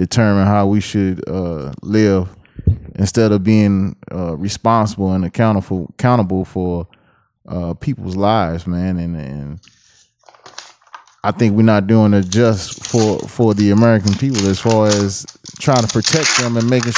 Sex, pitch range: male, 100-130 Hz